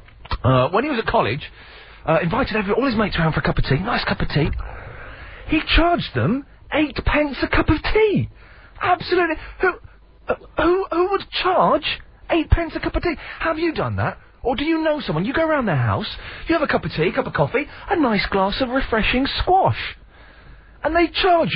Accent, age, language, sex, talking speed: British, 40-59, English, male, 210 wpm